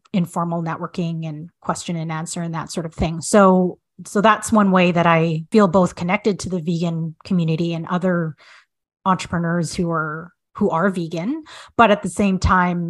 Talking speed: 175 wpm